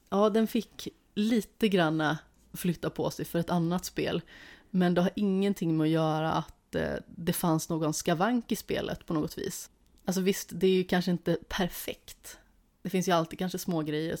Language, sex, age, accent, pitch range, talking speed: Swedish, female, 30-49, native, 165-200 Hz, 185 wpm